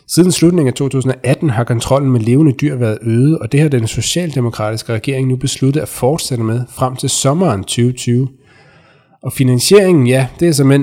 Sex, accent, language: male, native, Danish